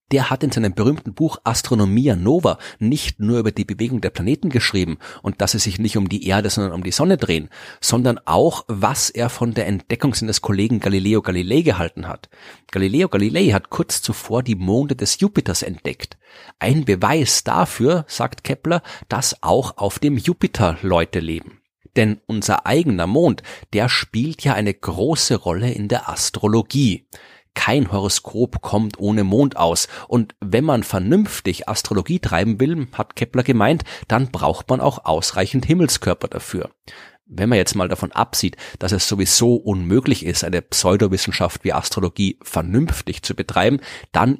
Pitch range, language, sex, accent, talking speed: 100-130 Hz, German, male, German, 160 wpm